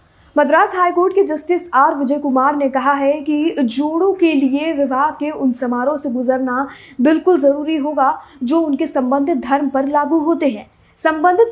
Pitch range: 260-340 Hz